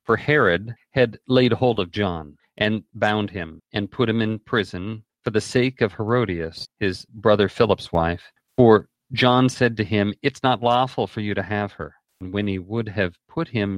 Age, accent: 40-59, American